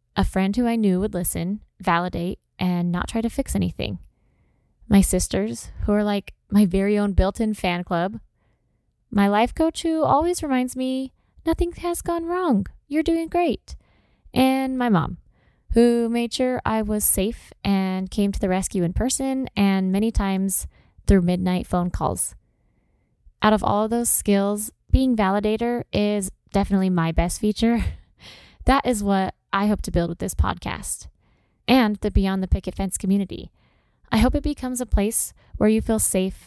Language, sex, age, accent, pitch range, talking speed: English, female, 10-29, American, 190-250 Hz, 170 wpm